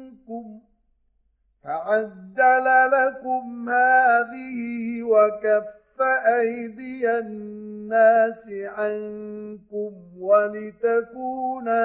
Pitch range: 210-255 Hz